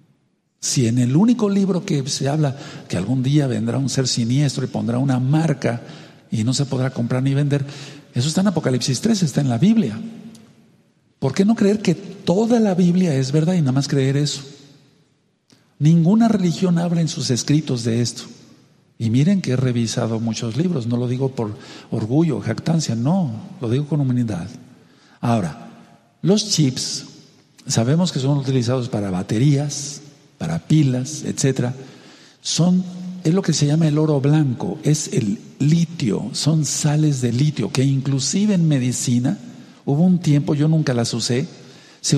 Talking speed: 165 wpm